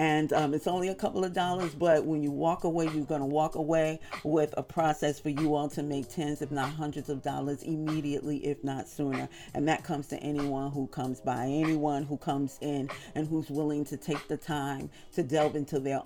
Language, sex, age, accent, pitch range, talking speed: English, female, 40-59, American, 140-160 Hz, 220 wpm